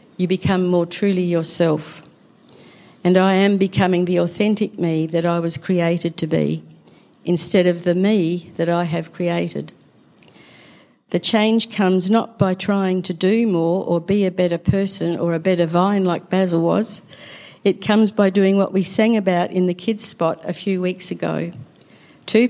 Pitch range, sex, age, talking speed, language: 170-195 Hz, female, 60-79, 170 wpm, English